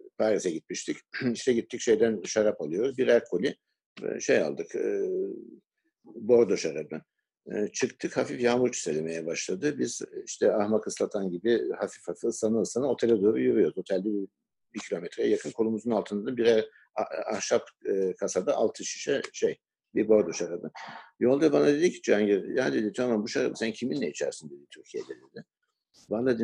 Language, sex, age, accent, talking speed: Turkish, male, 60-79, native, 150 wpm